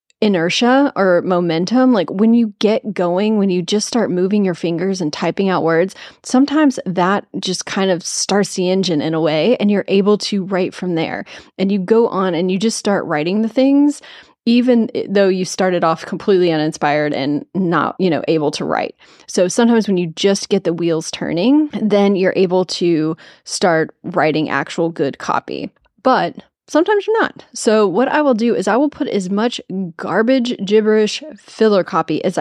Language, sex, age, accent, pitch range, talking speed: English, female, 30-49, American, 180-230 Hz, 185 wpm